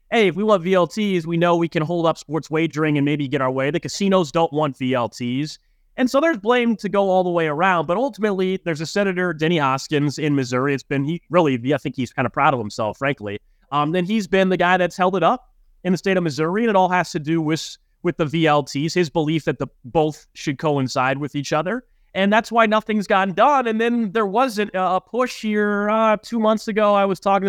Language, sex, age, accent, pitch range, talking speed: English, male, 30-49, American, 150-190 Hz, 240 wpm